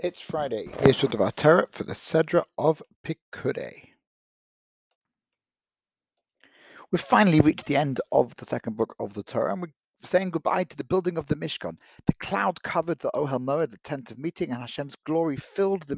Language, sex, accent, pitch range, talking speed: English, male, British, 130-190 Hz, 175 wpm